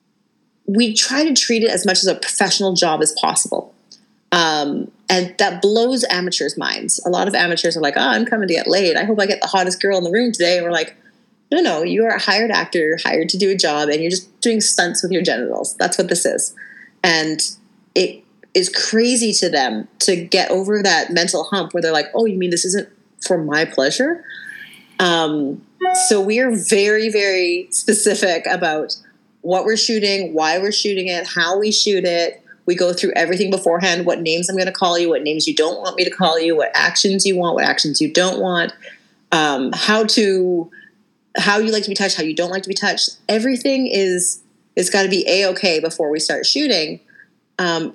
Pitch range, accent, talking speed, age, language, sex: 175-230 Hz, American, 215 wpm, 30-49, English, female